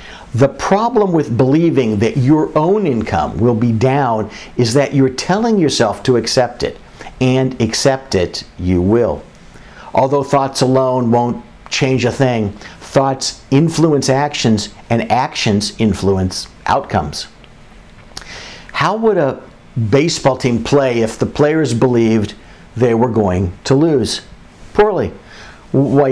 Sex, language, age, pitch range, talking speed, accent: male, English, 50-69, 115-150 Hz, 125 wpm, American